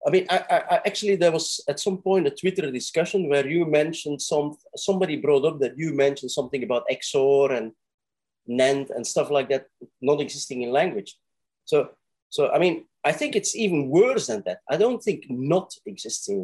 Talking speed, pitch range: 195 wpm, 135-195 Hz